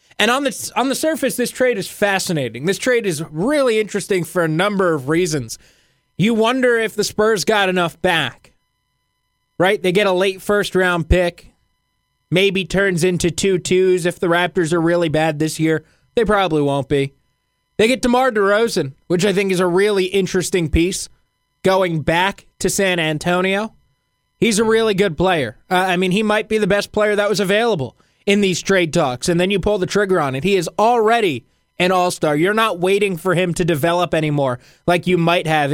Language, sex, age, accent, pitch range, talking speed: English, male, 20-39, American, 160-200 Hz, 195 wpm